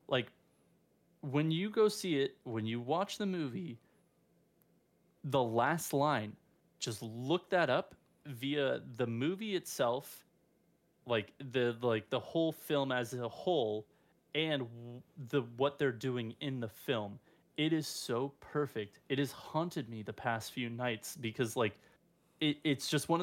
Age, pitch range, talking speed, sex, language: 20-39, 120-150 Hz, 145 wpm, male, English